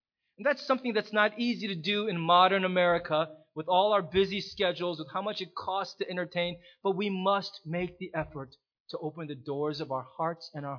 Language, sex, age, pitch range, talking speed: English, male, 30-49, 130-195 Hz, 205 wpm